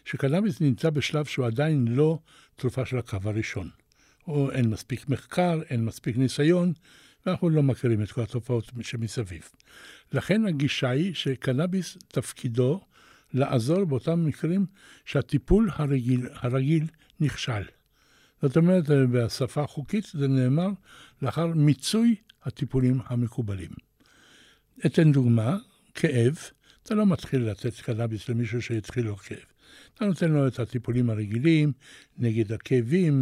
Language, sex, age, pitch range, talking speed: Hebrew, male, 60-79, 120-165 Hz, 120 wpm